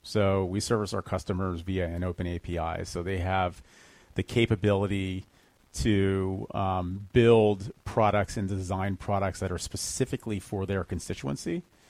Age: 40-59